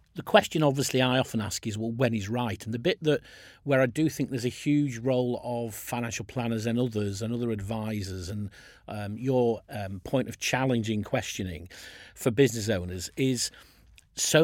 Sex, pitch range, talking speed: male, 105-130 Hz, 185 wpm